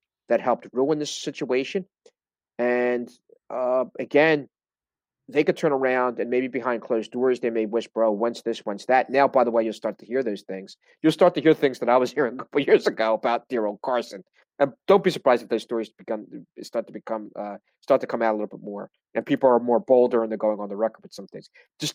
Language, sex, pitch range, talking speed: English, male, 110-130 Hz, 240 wpm